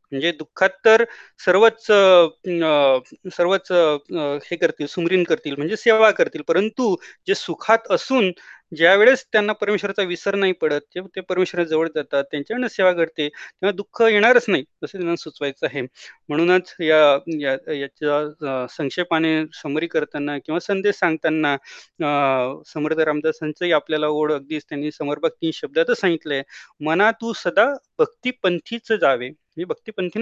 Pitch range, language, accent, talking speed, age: 150-190 Hz, Marathi, native, 130 wpm, 30-49